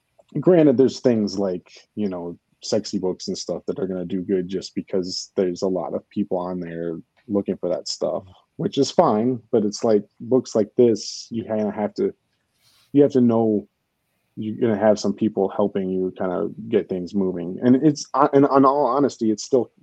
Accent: American